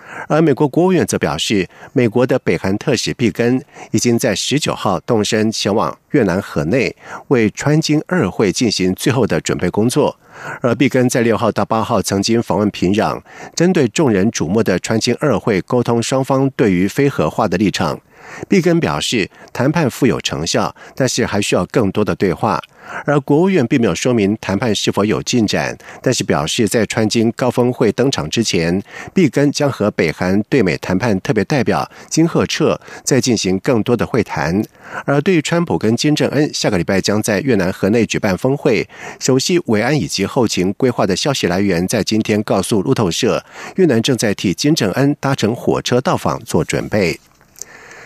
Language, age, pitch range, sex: German, 50-69, 105-140 Hz, male